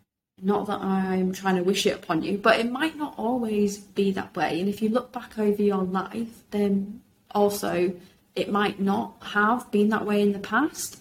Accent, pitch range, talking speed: British, 185-210 Hz, 200 wpm